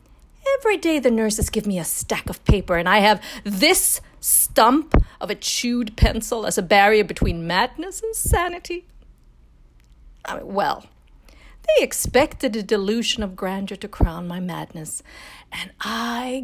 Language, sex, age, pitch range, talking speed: English, female, 40-59, 165-235 Hz, 140 wpm